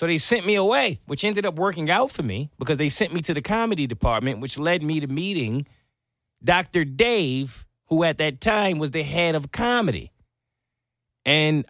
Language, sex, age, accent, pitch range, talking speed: English, male, 30-49, American, 125-190 Hz, 190 wpm